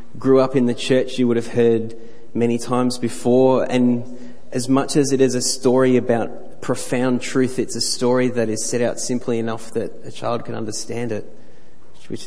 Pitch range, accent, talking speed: 115-125 Hz, Australian, 190 wpm